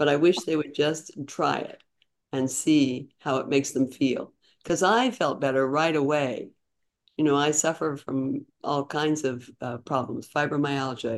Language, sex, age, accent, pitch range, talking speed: English, female, 50-69, American, 135-155 Hz, 170 wpm